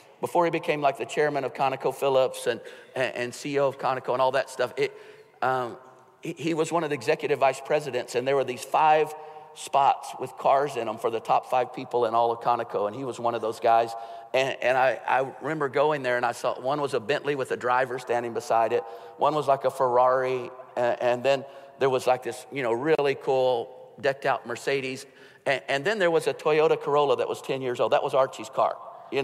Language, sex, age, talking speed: English, male, 50-69, 230 wpm